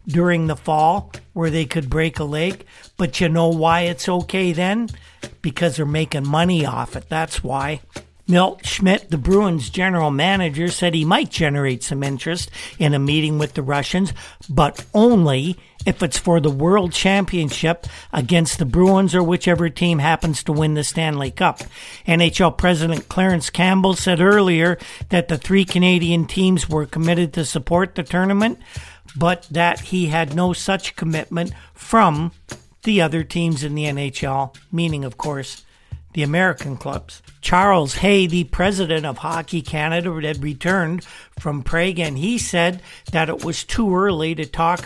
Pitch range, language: 155-185 Hz, English